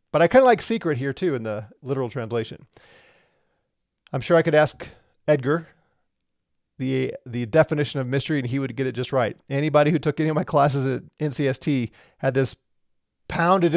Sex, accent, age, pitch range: male, American, 30-49, 130-175 Hz